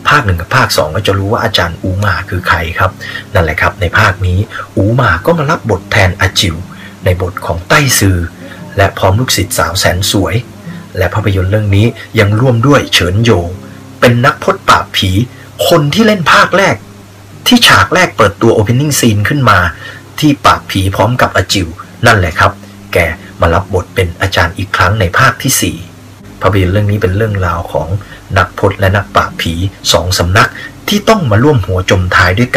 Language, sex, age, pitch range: Thai, male, 30-49, 95-115 Hz